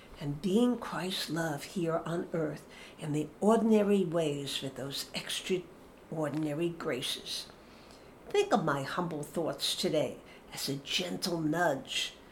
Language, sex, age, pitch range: Polish, female, 60-79, 155-205 Hz